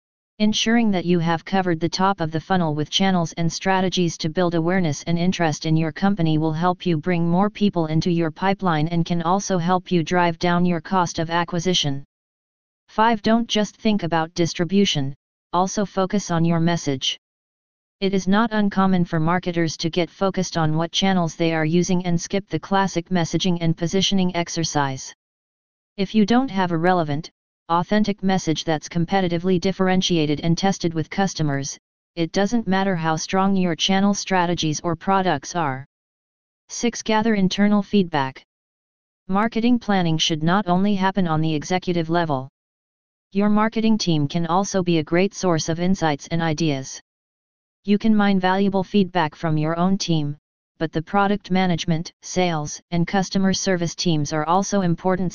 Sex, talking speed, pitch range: female, 165 wpm, 165-195 Hz